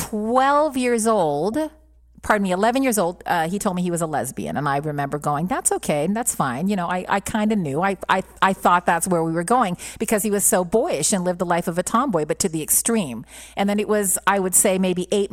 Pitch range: 180-220 Hz